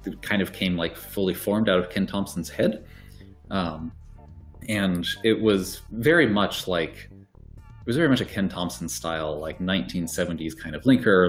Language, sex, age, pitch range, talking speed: Italian, male, 30-49, 80-100 Hz, 165 wpm